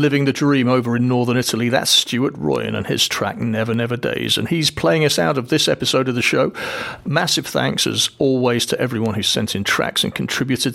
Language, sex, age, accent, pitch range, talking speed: English, male, 40-59, British, 115-135 Hz, 220 wpm